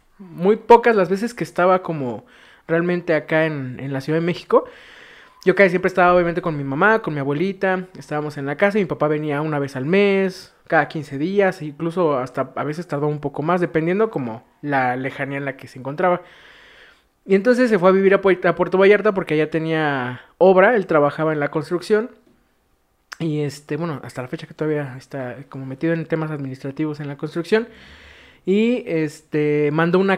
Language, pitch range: Spanish, 155-195 Hz